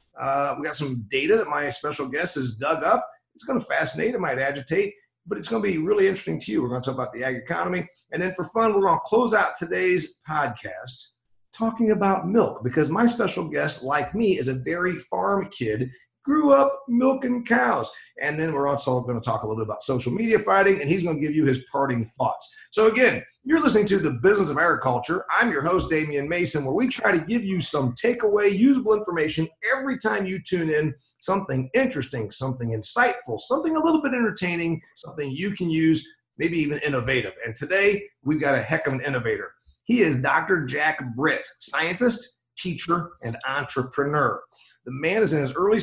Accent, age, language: American, 40-59, English